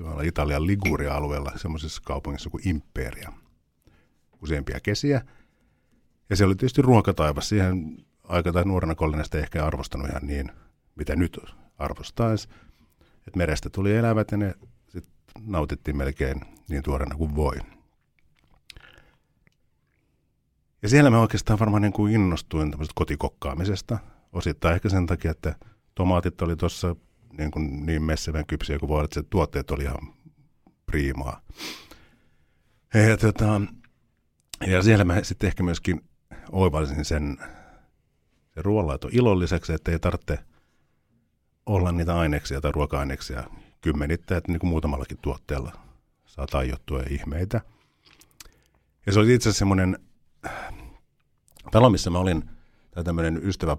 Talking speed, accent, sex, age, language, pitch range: 120 wpm, native, male, 50-69, Finnish, 75-100 Hz